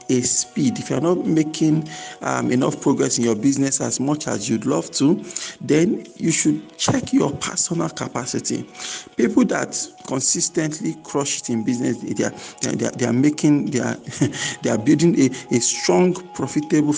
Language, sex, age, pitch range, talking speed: English, male, 50-69, 115-140 Hz, 170 wpm